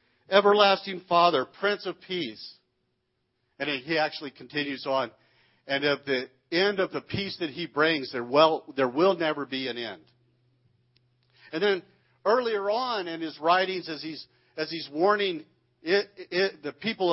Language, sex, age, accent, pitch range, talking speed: English, male, 50-69, American, 125-165 Hz, 155 wpm